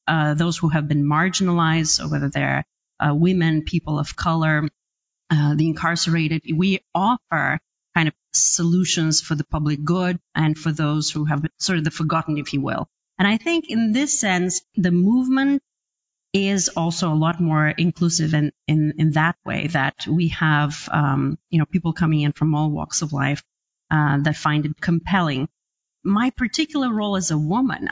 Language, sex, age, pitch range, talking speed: English, female, 30-49, 150-180 Hz, 180 wpm